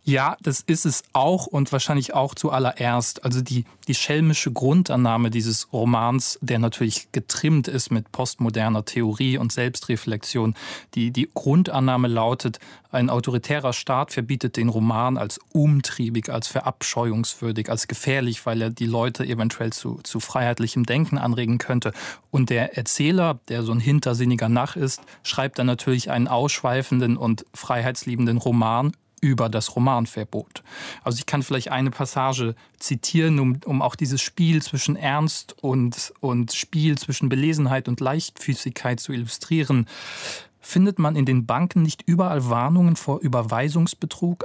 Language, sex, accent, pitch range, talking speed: German, male, German, 120-150 Hz, 140 wpm